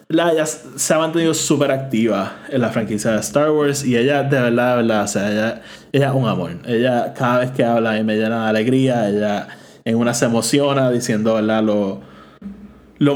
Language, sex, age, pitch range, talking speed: Spanish, male, 20-39, 115-145 Hz, 210 wpm